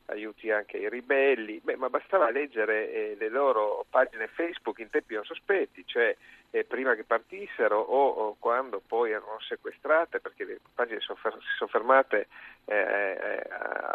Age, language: 40-59, Italian